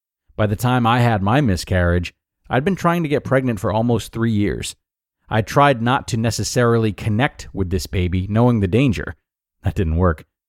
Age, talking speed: 30-49, 185 wpm